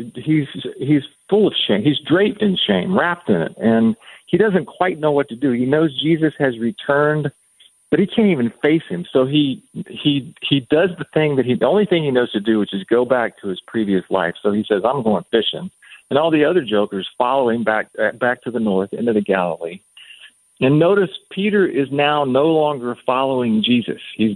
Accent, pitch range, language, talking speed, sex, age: American, 110-145 Hz, English, 210 wpm, male, 50-69